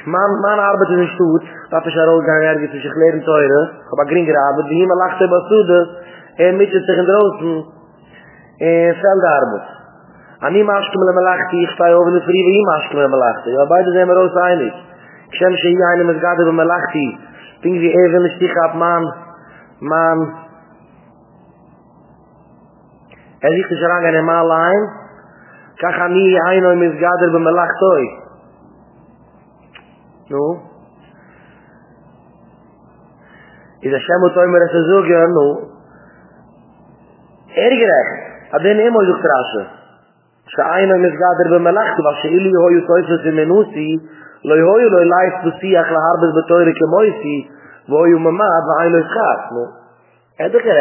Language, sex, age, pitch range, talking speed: English, male, 30-49, 160-180 Hz, 40 wpm